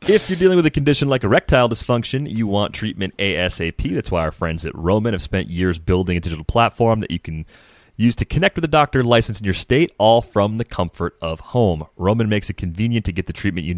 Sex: male